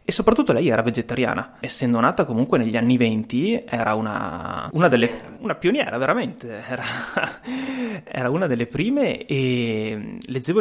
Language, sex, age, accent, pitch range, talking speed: Italian, male, 20-39, native, 115-135 Hz, 140 wpm